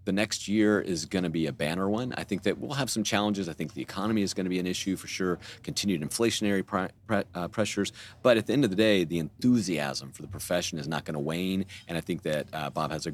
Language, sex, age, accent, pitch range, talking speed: English, male, 40-59, American, 85-110 Hz, 265 wpm